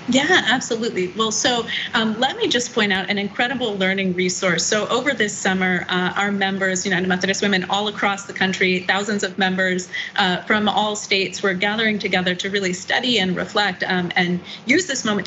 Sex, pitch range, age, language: female, 185-215 Hz, 30-49, English